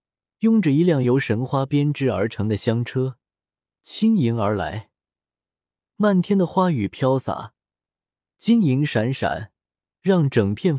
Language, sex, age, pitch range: Chinese, male, 20-39, 110-165 Hz